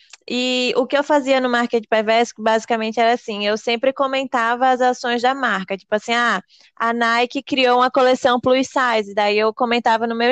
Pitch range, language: 230-260 Hz, Portuguese